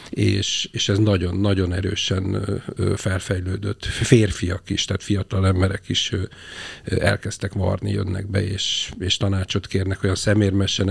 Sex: male